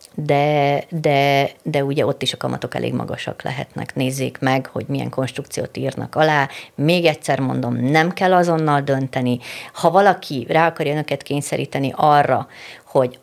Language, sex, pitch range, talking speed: Hungarian, female, 130-165 Hz, 150 wpm